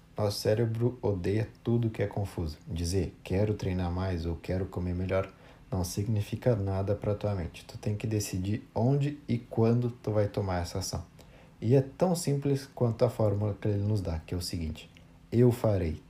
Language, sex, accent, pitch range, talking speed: Portuguese, male, Brazilian, 95-125 Hz, 190 wpm